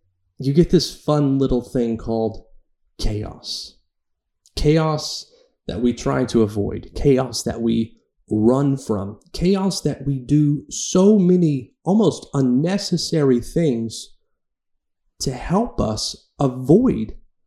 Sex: male